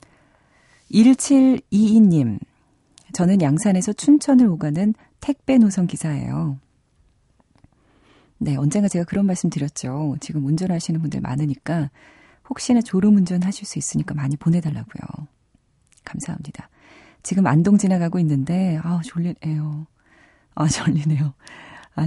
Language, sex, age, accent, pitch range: Korean, female, 30-49, native, 145-195 Hz